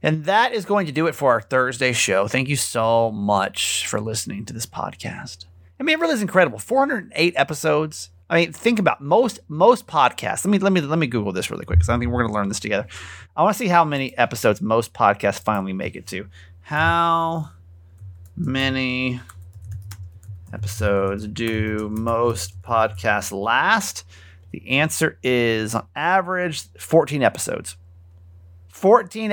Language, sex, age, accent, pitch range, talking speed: English, male, 30-49, American, 95-150 Hz, 165 wpm